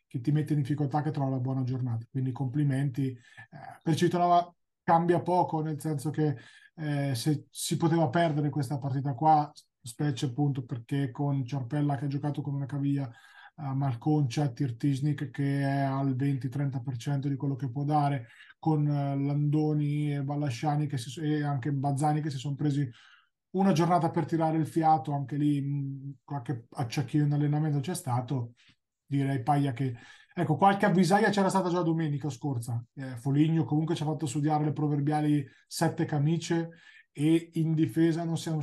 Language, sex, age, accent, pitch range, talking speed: Italian, male, 20-39, native, 140-155 Hz, 165 wpm